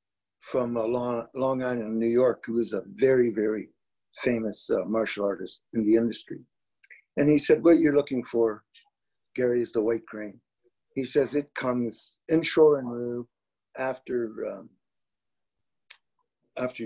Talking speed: 145 wpm